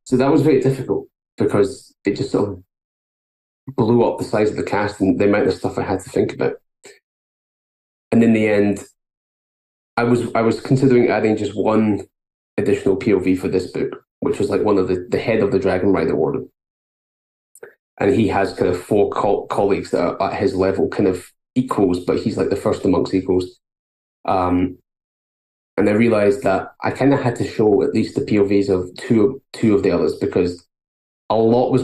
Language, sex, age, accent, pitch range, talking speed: English, male, 20-39, British, 95-120 Hz, 200 wpm